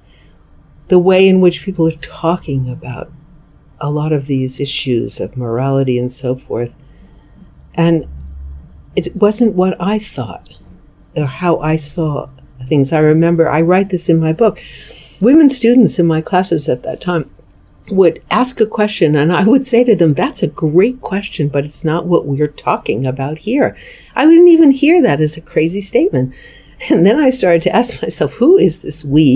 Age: 60-79